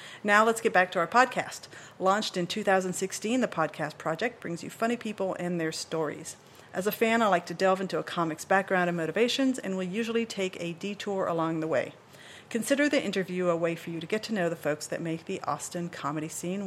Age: 50-69